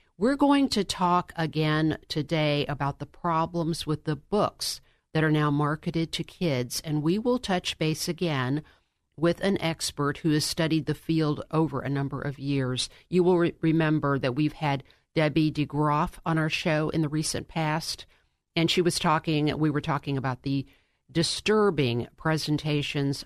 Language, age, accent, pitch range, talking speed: English, 50-69, American, 140-165 Hz, 165 wpm